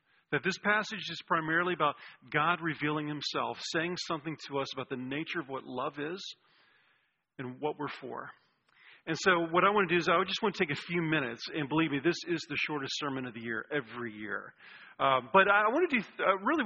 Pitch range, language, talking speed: 160-215 Hz, English, 220 wpm